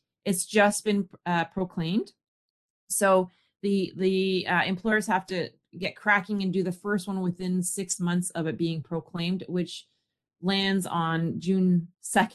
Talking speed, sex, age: 145 wpm, female, 30-49